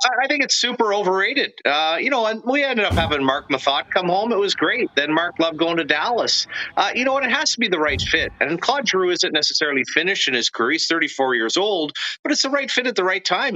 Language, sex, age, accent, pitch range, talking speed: English, male, 40-59, American, 135-205 Hz, 260 wpm